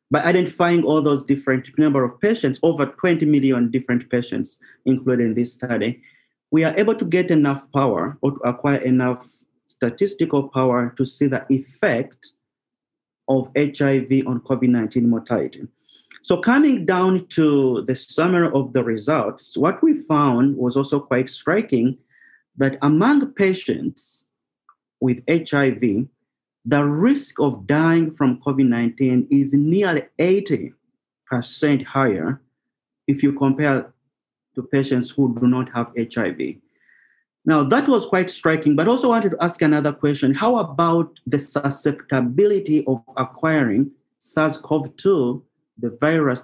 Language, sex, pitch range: English, male, 130-160 Hz